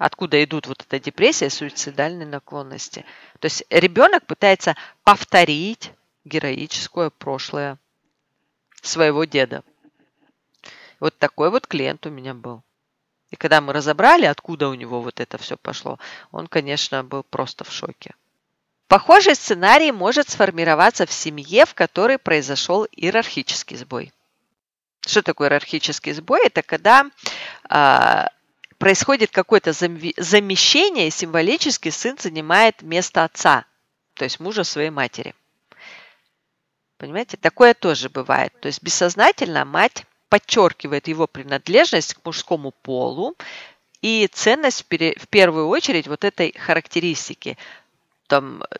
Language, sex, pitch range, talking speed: Russian, female, 145-190 Hz, 115 wpm